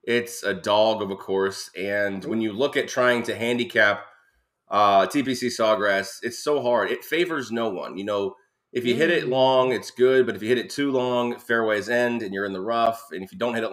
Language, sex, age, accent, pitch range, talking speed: English, male, 20-39, American, 100-120 Hz, 230 wpm